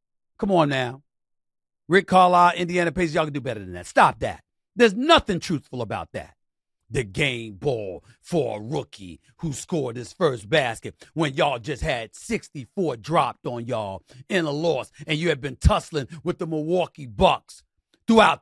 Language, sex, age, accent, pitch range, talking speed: English, male, 40-59, American, 105-160 Hz, 170 wpm